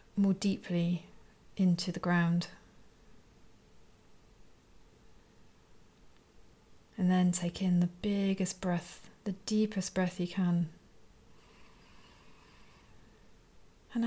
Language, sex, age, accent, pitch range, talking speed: English, female, 40-59, British, 170-195 Hz, 75 wpm